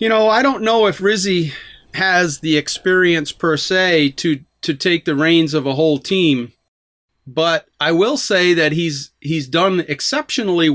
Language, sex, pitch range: English, male, 150-195 Hz